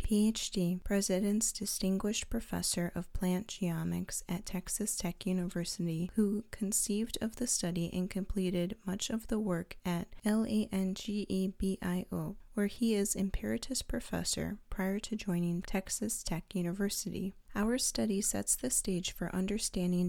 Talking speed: 125 wpm